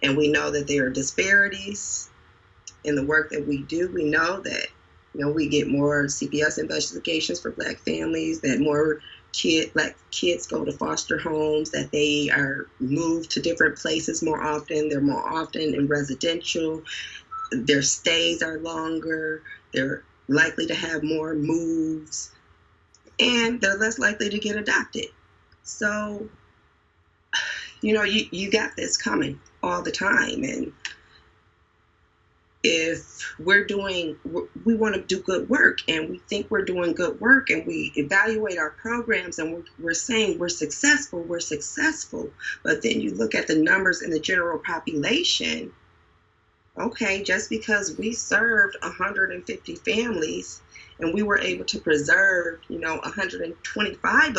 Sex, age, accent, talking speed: female, 20-39, American, 150 wpm